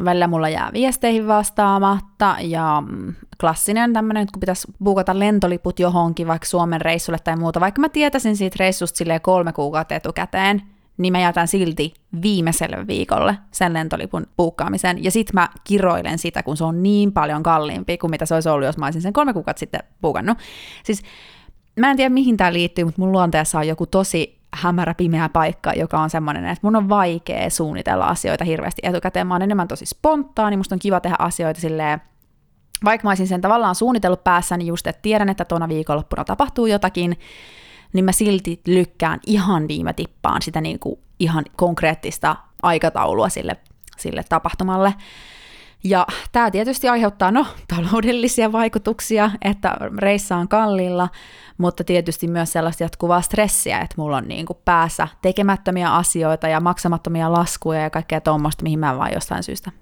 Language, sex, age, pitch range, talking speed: Finnish, female, 20-39, 165-205 Hz, 165 wpm